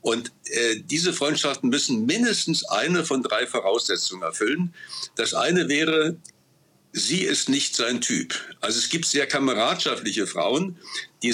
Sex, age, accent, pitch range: male, 60-79, German, 130-175 Hz